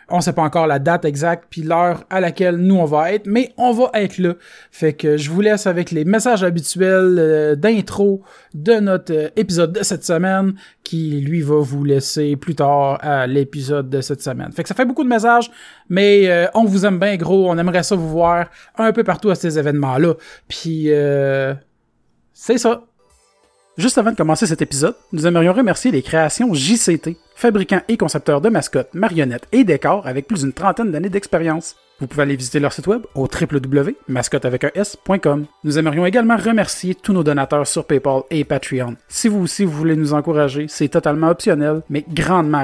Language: French